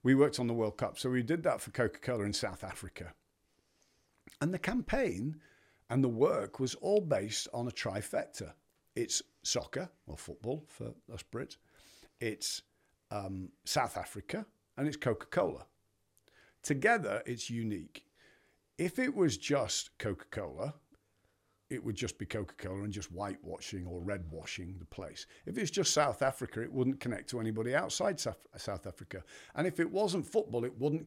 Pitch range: 105-145 Hz